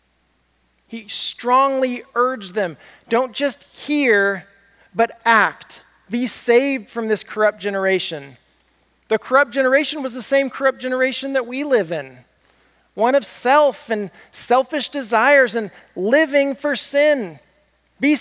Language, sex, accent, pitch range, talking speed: English, male, American, 145-240 Hz, 125 wpm